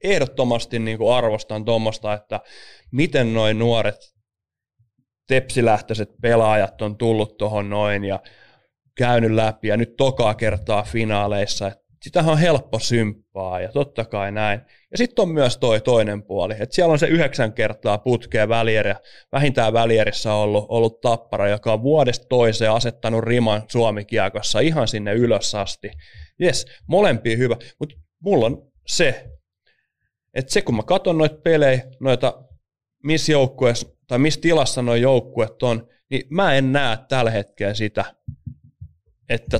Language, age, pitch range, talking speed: Finnish, 20-39, 105-125 Hz, 140 wpm